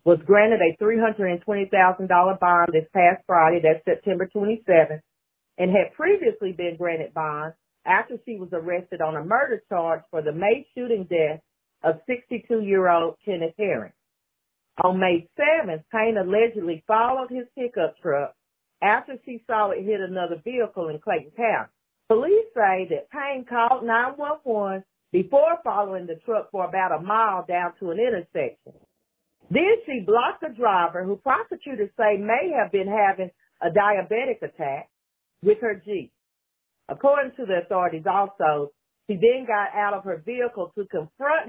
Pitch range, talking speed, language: 180-245 Hz, 150 wpm, English